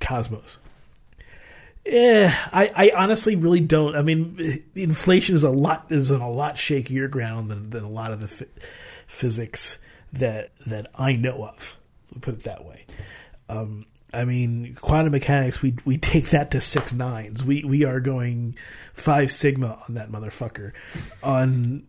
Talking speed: 160 wpm